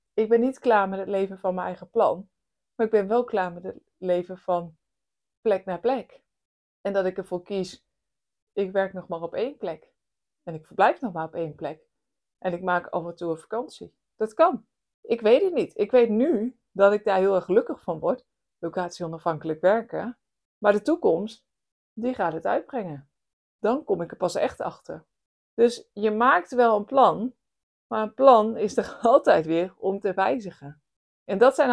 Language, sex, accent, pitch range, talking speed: Dutch, female, Dutch, 180-245 Hz, 195 wpm